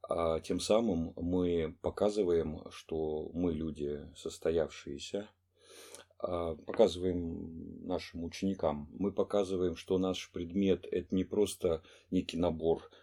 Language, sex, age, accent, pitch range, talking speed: Russian, male, 40-59, native, 80-95 Hz, 95 wpm